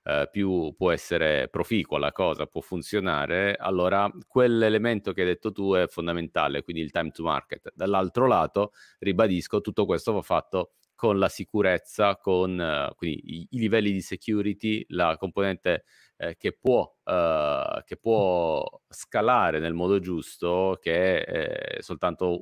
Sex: male